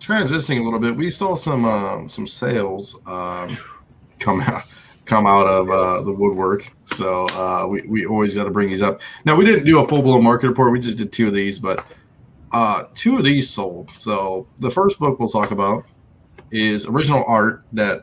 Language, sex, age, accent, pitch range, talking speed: English, male, 20-39, American, 105-130 Hz, 200 wpm